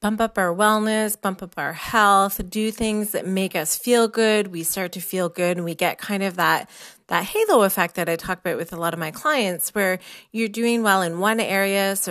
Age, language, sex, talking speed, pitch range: 30-49, English, female, 235 wpm, 185-230 Hz